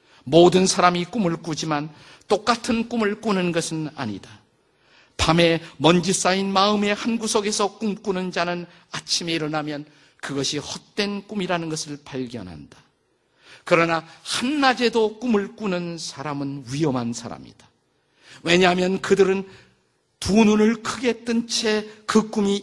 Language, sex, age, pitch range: Korean, male, 50-69, 150-210 Hz